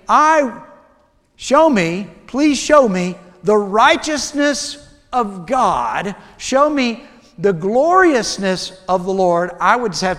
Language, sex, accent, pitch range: English, male, American, 175-245 Hz